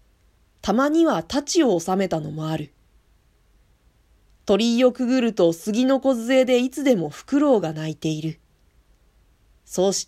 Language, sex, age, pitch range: Japanese, female, 40-59, 170-245 Hz